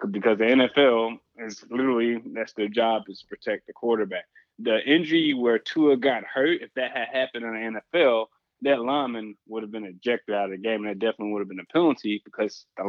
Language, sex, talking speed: English, male, 210 wpm